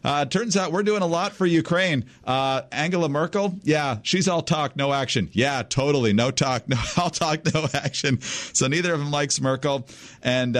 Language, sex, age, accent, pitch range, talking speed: English, male, 40-59, American, 105-145 Hz, 195 wpm